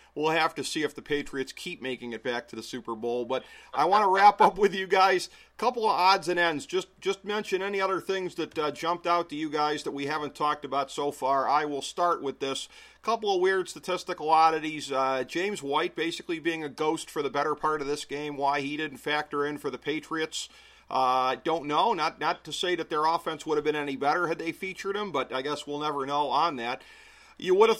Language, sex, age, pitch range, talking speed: English, male, 40-59, 145-180 Hz, 245 wpm